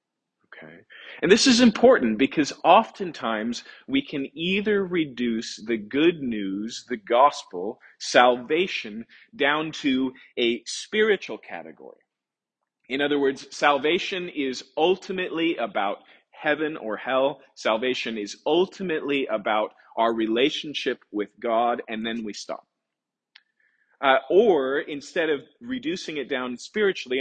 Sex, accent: male, American